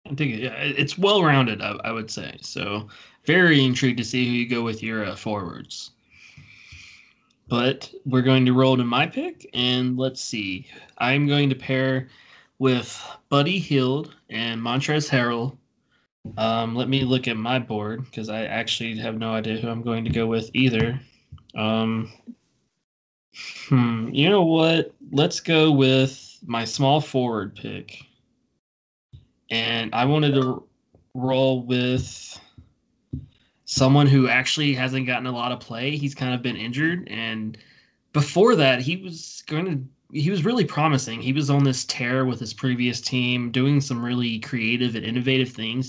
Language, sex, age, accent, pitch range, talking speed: English, male, 20-39, American, 115-140 Hz, 155 wpm